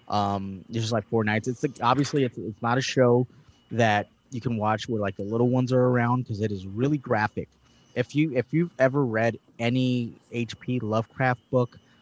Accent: American